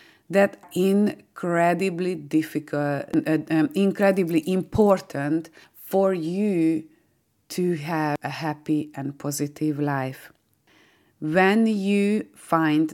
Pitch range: 150-185 Hz